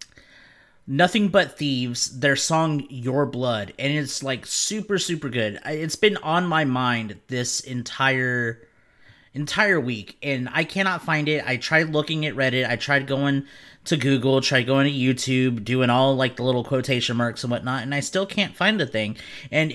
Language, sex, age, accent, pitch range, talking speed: English, male, 30-49, American, 130-175 Hz, 175 wpm